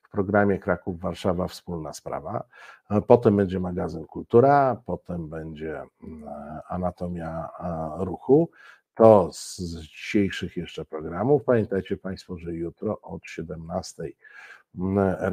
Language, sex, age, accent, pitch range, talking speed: Polish, male, 50-69, native, 90-105 Hz, 100 wpm